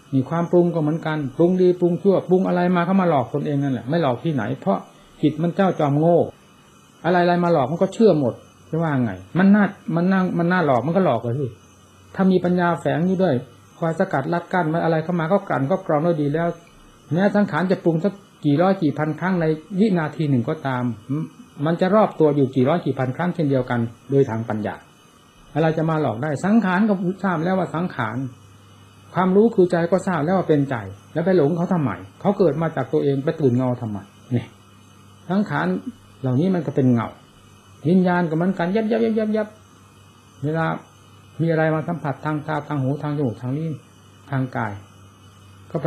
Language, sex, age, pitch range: Thai, male, 60-79, 130-180 Hz